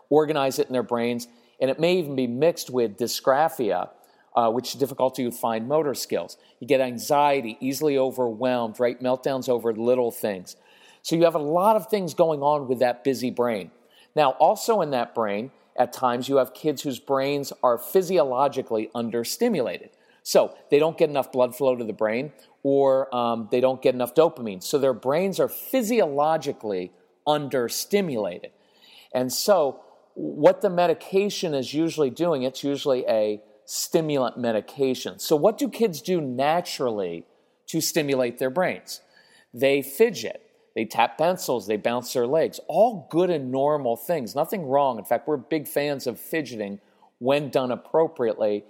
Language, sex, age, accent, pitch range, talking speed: English, male, 40-59, American, 120-165 Hz, 160 wpm